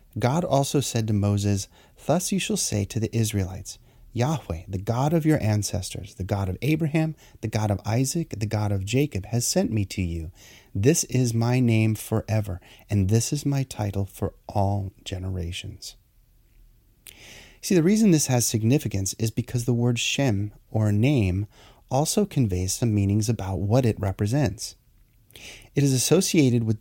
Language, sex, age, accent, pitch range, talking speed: English, male, 30-49, American, 100-130 Hz, 165 wpm